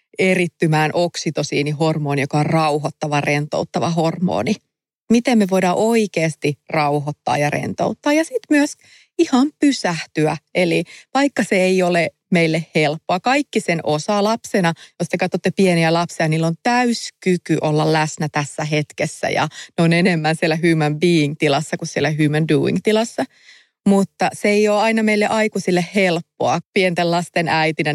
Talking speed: 135 wpm